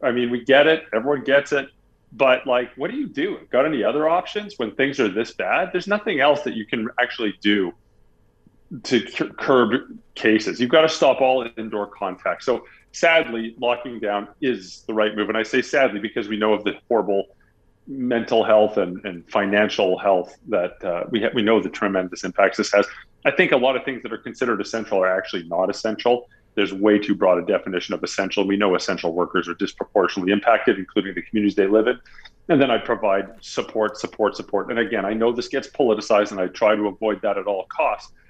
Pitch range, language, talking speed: 105-125 Hz, English, 210 wpm